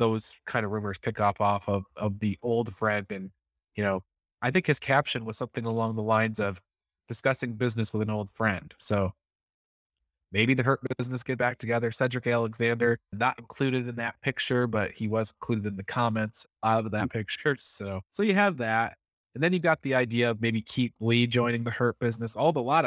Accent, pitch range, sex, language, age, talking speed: American, 100-125 Hz, male, English, 20-39, 205 wpm